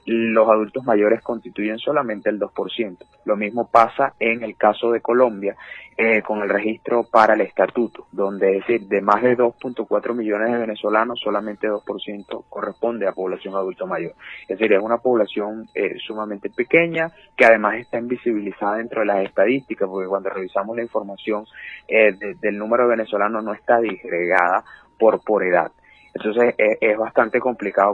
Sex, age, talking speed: male, 30-49, 160 wpm